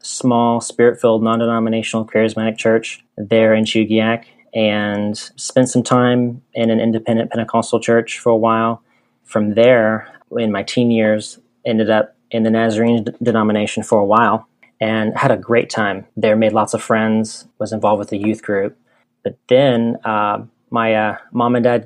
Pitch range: 105-115 Hz